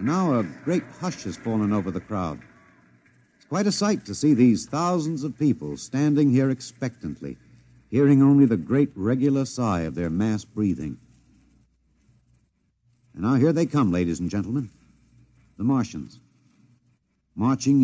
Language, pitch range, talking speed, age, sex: English, 100-130 Hz, 150 wpm, 60-79, male